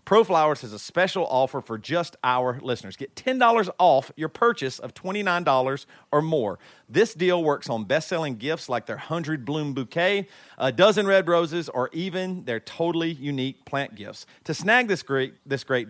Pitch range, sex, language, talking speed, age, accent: 130-175 Hz, male, English, 170 wpm, 40-59, American